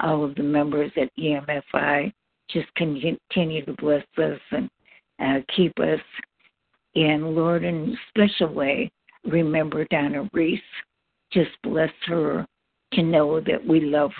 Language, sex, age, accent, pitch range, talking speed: English, female, 60-79, American, 150-175 Hz, 135 wpm